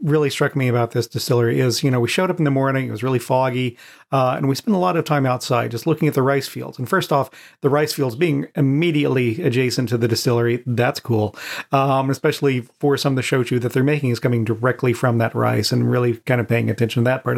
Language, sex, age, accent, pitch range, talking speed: English, male, 40-59, American, 125-150 Hz, 250 wpm